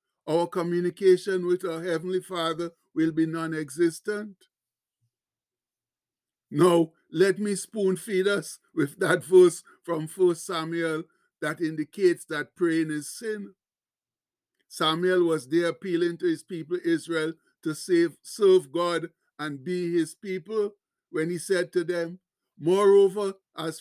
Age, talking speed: 60-79, 120 wpm